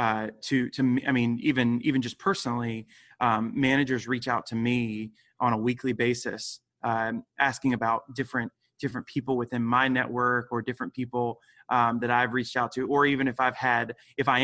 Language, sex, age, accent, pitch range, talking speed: English, male, 20-39, American, 125-140 Hz, 185 wpm